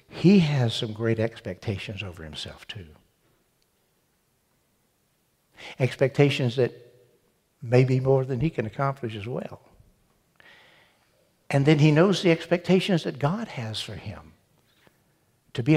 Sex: male